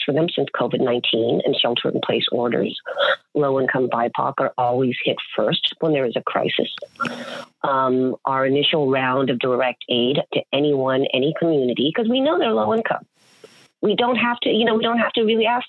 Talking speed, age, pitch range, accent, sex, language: 190 wpm, 40-59, 145-235 Hz, American, female, English